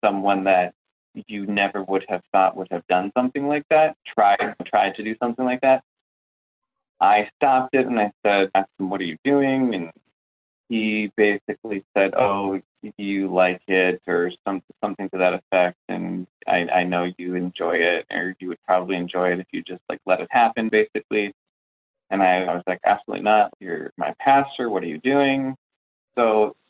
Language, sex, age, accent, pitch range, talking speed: English, male, 20-39, American, 90-130 Hz, 185 wpm